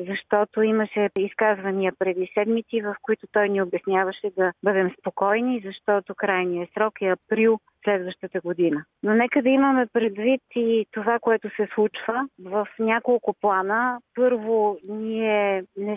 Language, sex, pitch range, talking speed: Bulgarian, female, 190-225 Hz, 135 wpm